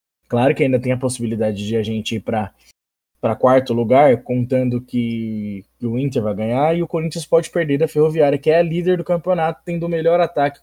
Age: 20-39